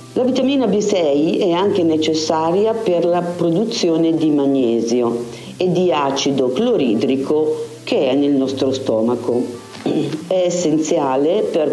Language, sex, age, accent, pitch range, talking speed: Italian, female, 50-69, native, 135-165 Hz, 120 wpm